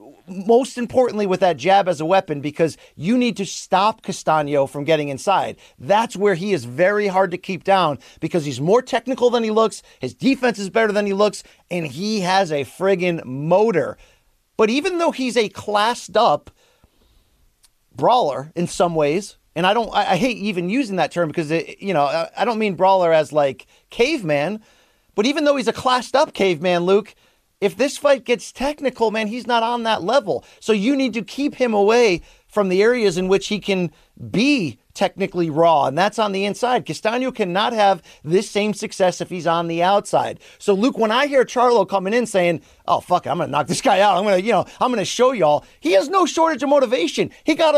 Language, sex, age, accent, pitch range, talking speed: English, male, 40-59, American, 175-240 Hz, 210 wpm